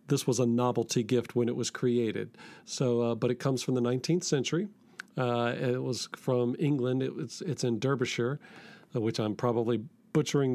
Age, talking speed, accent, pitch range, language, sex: 40-59, 180 wpm, American, 120-155 Hz, English, male